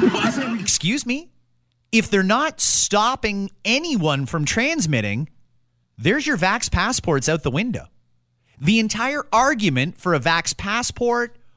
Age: 30-49